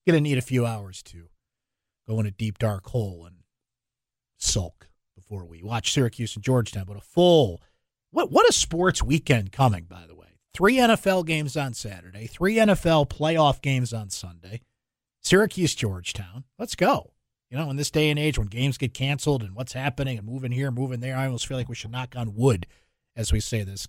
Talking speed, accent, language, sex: 200 wpm, American, English, male